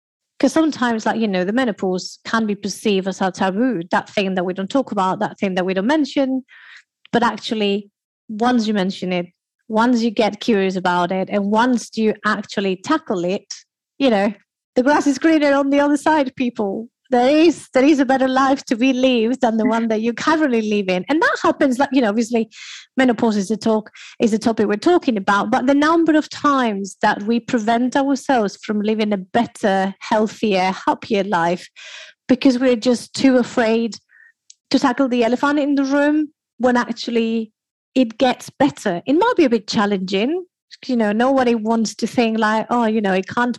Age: 30-49